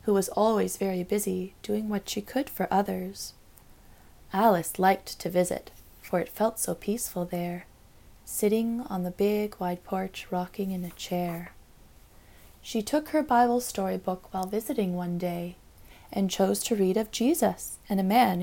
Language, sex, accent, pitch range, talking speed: English, female, American, 180-240 Hz, 165 wpm